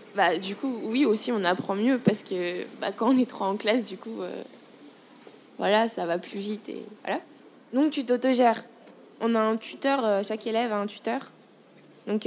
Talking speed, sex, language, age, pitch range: 200 wpm, female, French, 20-39, 195-230 Hz